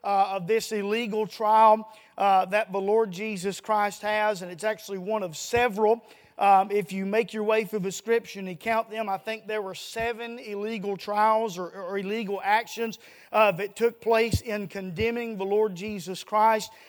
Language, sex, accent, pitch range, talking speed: English, male, American, 210-250 Hz, 185 wpm